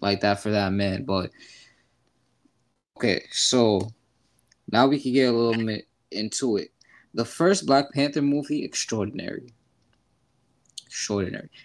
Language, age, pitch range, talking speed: English, 20-39, 105-130 Hz, 125 wpm